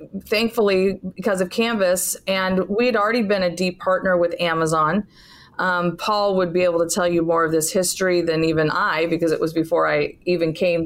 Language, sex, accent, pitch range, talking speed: English, female, American, 170-200 Hz, 200 wpm